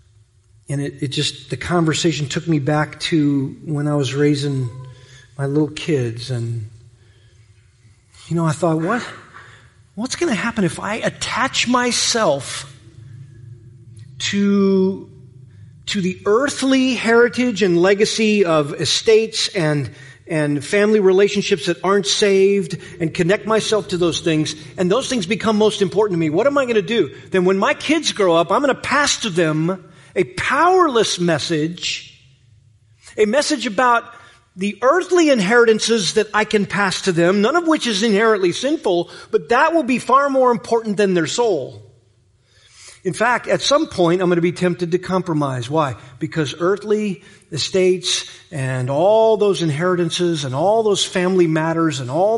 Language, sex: English, male